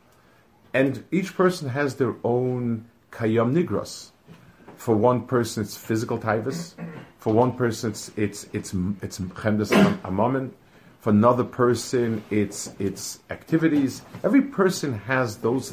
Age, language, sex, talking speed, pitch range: 50-69, English, male, 125 wpm, 105-140 Hz